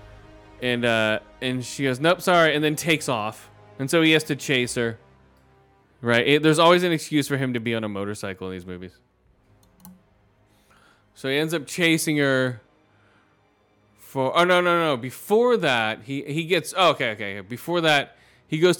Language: English